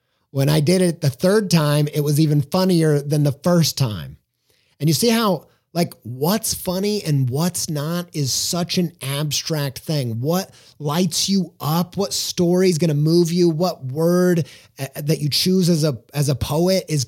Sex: male